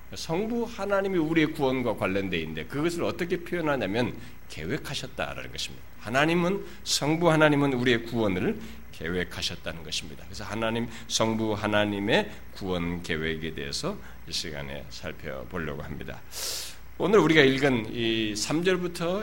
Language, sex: Korean, male